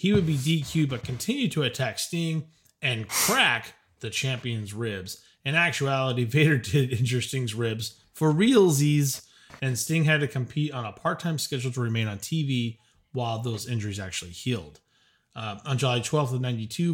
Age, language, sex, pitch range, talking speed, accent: 30-49, English, male, 120-155 Hz, 165 wpm, American